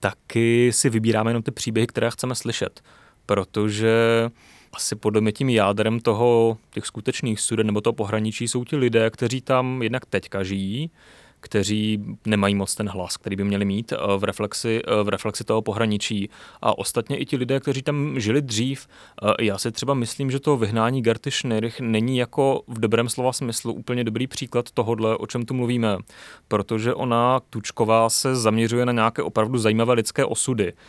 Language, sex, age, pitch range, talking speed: Czech, male, 30-49, 105-120 Hz, 170 wpm